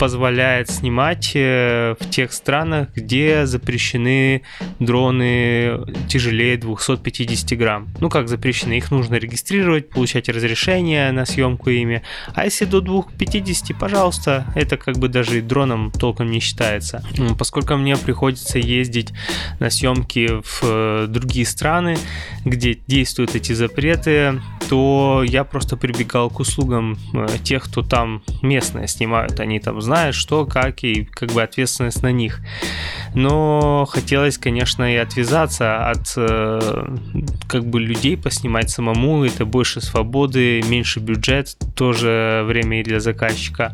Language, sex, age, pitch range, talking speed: Russian, male, 20-39, 115-135 Hz, 125 wpm